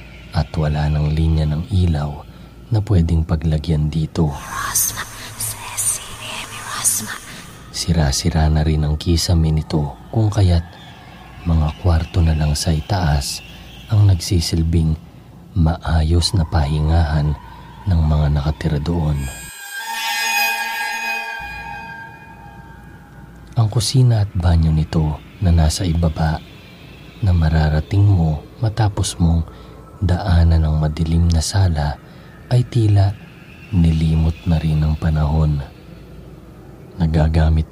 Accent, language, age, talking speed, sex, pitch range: native, Filipino, 40-59, 95 wpm, male, 80-95 Hz